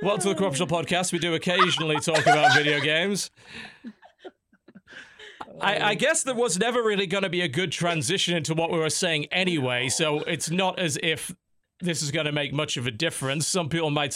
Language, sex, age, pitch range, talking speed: English, male, 40-59, 110-155 Hz, 205 wpm